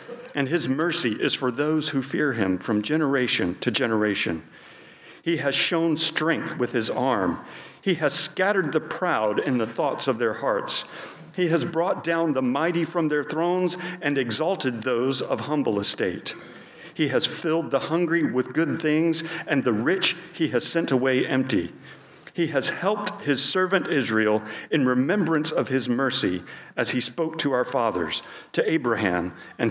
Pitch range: 115-165 Hz